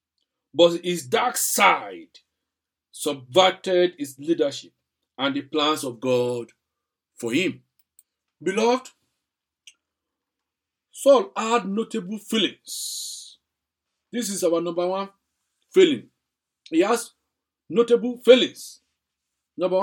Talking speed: 90 wpm